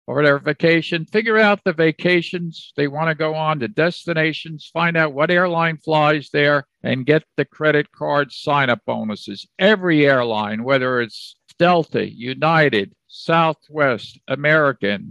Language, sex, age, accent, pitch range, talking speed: English, male, 50-69, American, 140-170 Hz, 140 wpm